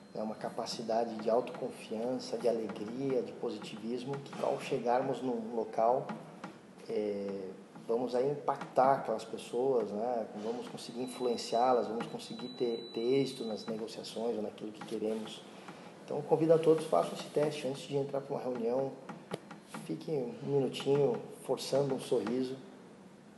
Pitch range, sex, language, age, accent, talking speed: 115-140 Hz, male, Portuguese, 20-39, Brazilian, 135 wpm